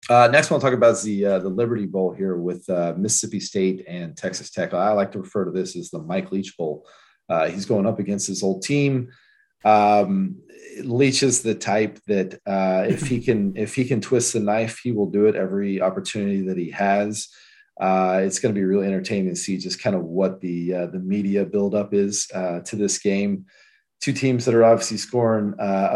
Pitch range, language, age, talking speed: 95-120 Hz, English, 30-49, 215 wpm